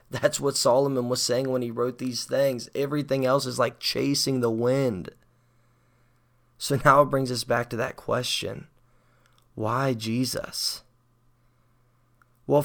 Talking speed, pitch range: 140 wpm, 120-130 Hz